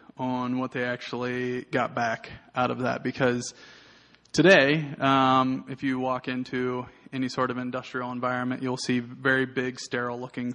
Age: 20-39